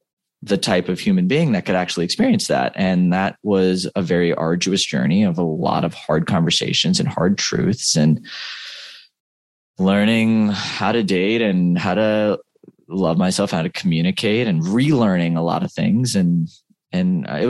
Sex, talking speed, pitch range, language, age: male, 165 wpm, 85-105 Hz, English, 20-39